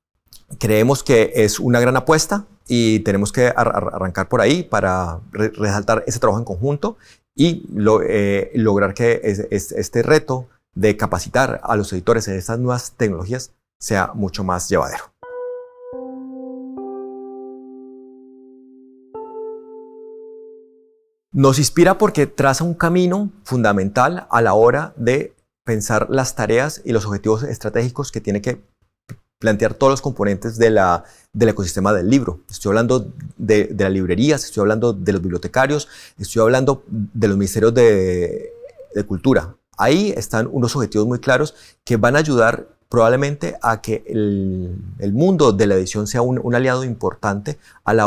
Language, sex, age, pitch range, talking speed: English, male, 30-49, 105-135 Hz, 145 wpm